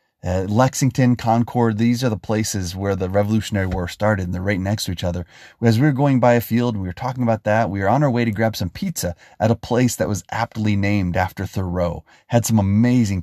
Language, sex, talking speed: English, male, 235 wpm